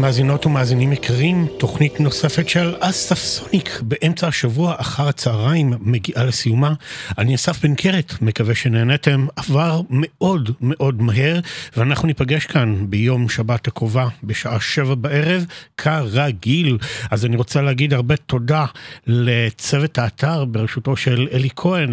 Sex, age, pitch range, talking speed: male, 50-69, 120-150 Hz, 125 wpm